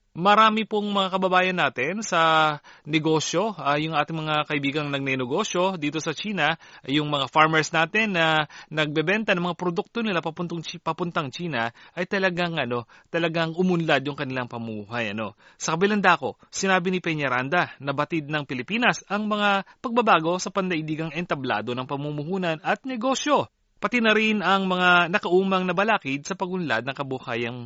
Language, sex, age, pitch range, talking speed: Filipino, male, 30-49, 145-195 Hz, 155 wpm